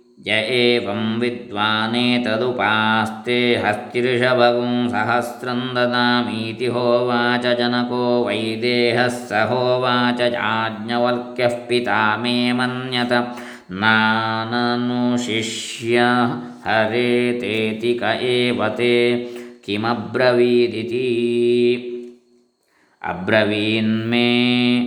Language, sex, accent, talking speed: Kannada, male, native, 40 wpm